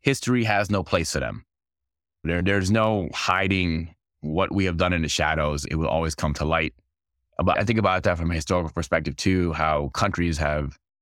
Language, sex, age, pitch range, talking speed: English, male, 20-39, 75-95 Hz, 195 wpm